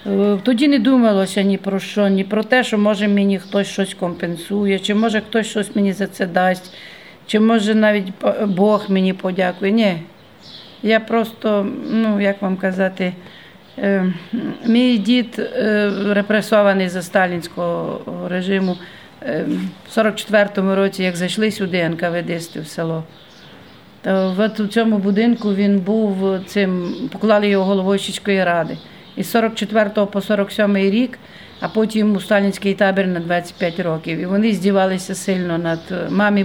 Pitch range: 185-210 Hz